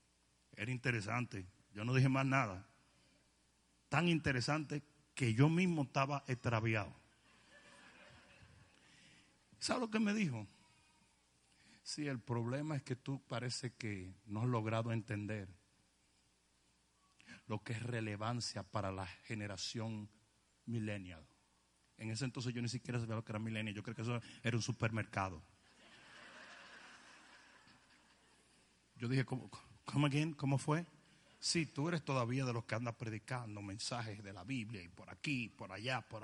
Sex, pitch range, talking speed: male, 100-130 Hz, 135 wpm